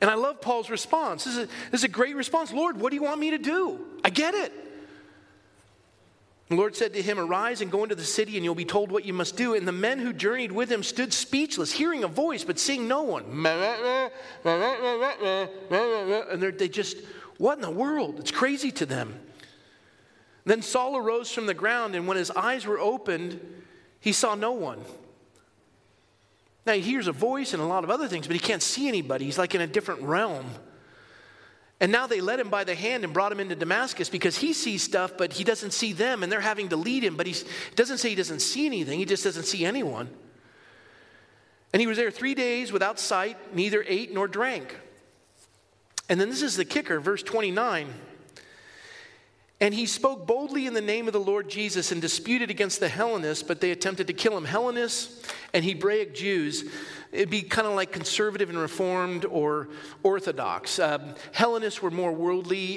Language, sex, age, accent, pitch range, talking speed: English, male, 40-59, American, 185-255 Hz, 200 wpm